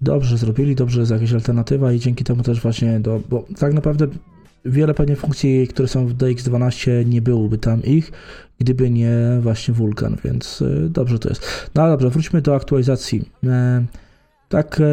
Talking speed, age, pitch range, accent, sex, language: 165 wpm, 20-39, 115-140 Hz, native, male, Polish